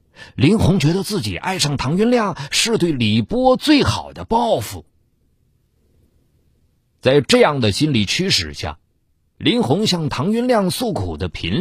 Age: 50-69